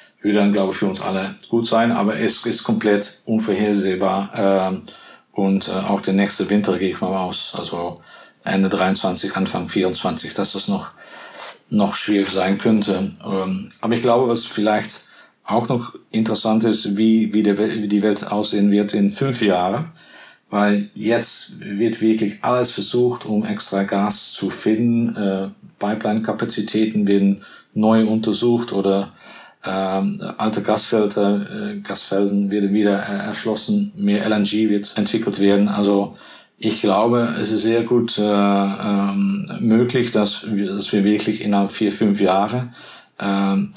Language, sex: German, male